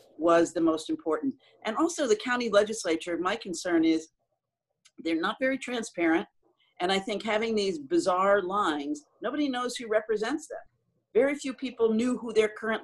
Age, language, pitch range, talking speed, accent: 50-69, English, 165-240 Hz, 165 wpm, American